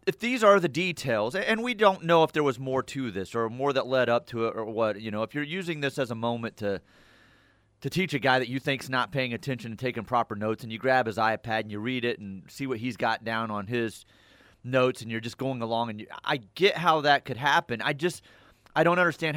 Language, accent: English, American